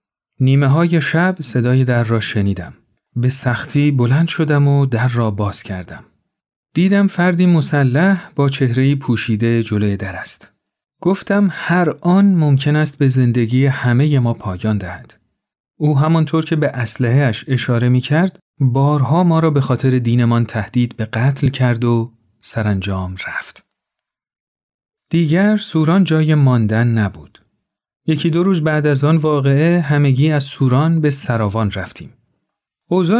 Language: Persian